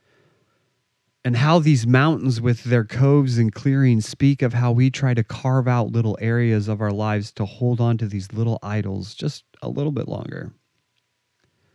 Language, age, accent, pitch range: English, 30-49, American, 110-135 Hz